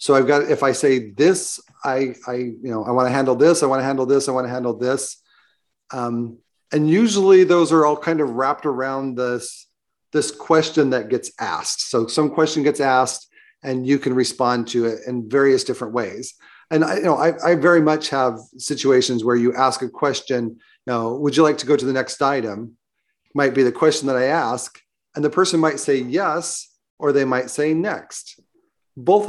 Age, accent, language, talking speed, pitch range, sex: 40-59, American, English, 210 wpm, 125-150 Hz, male